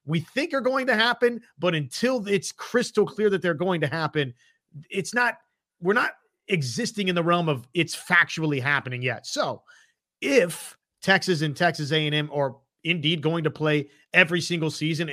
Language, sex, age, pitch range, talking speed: English, male, 30-49, 145-190 Hz, 170 wpm